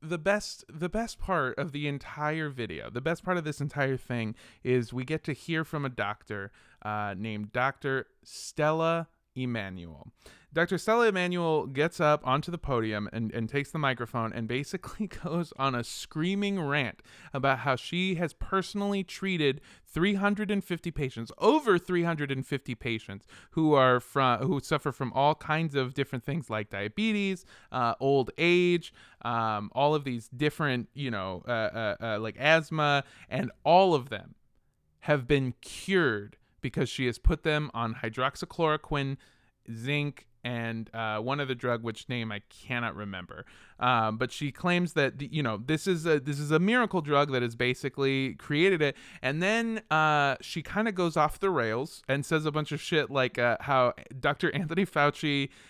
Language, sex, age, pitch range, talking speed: English, male, 20-39, 120-165 Hz, 170 wpm